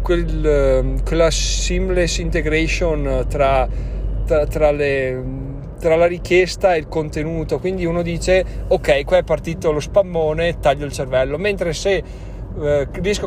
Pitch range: 130-170 Hz